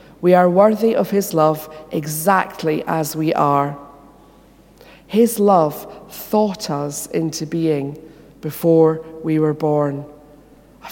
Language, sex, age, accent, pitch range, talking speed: English, female, 40-59, British, 150-200 Hz, 115 wpm